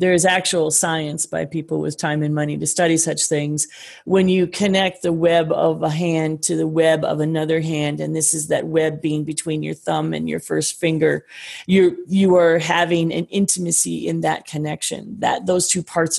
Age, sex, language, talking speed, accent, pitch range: 30-49, female, English, 200 wpm, American, 155-175 Hz